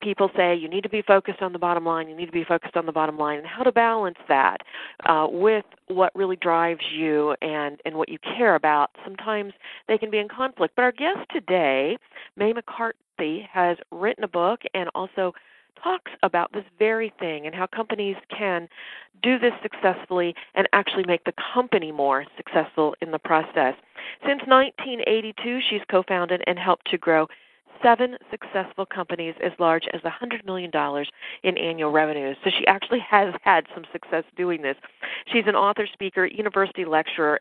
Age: 40-59